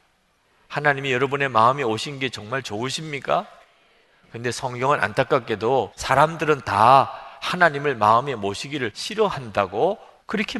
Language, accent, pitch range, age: Korean, native, 120-165 Hz, 40-59